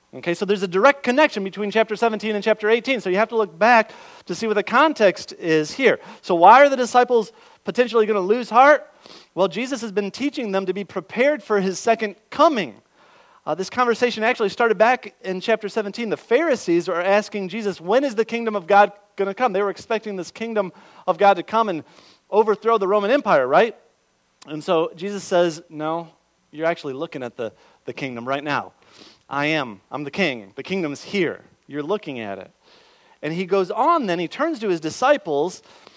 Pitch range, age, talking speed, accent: 170-230 Hz, 40-59, 205 wpm, American